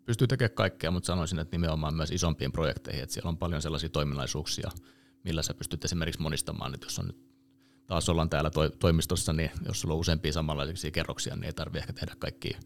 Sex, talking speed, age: male, 200 wpm, 30-49